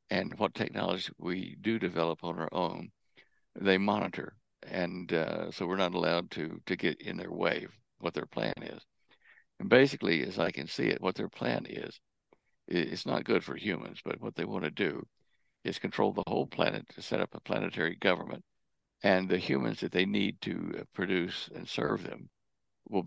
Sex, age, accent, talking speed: male, 60-79, American, 185 wpm